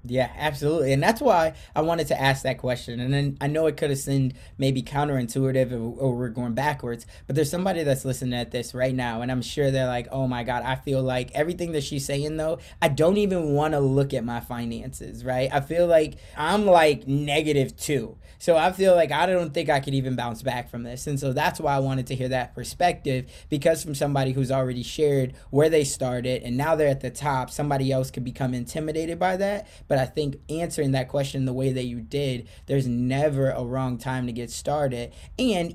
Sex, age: male, 20-39